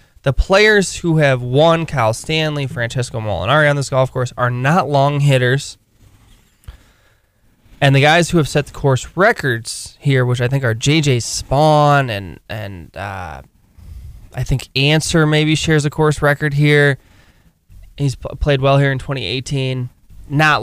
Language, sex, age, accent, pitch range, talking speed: English, male, 20-39, American, 110-145 Hz, 150 wpm